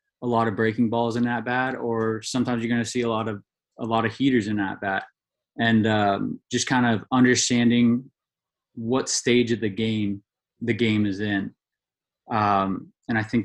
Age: 20-39